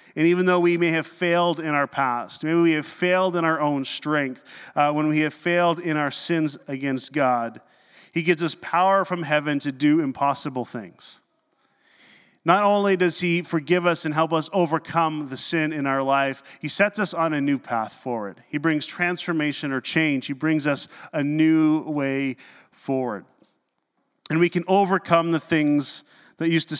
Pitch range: 140-170 Hz